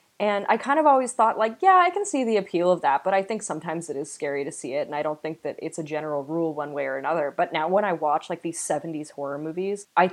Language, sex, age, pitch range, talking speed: English, female, 20-39, 155-195 Hz, 290 wpm